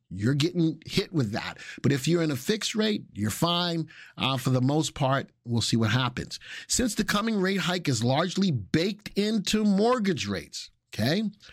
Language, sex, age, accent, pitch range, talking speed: English, male, 50-69, American, 120-175 Hz, 180 wpm